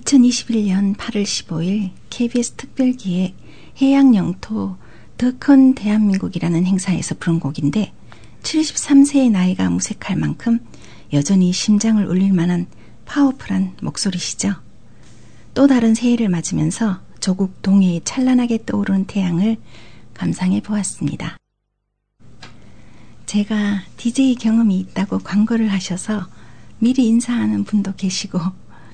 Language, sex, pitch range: Korean, female, 170-225 Hz